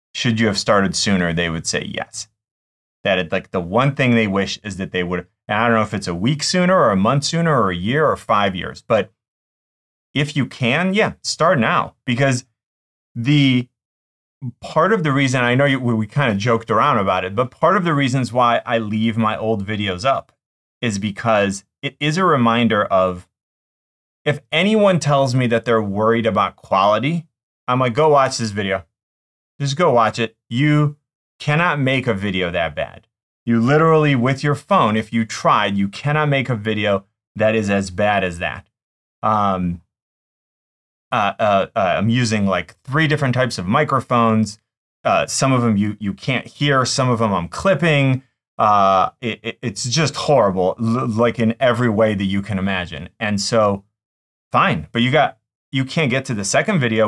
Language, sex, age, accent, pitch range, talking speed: English, male, 30-49, American, 100-135 Hz, 185 wpm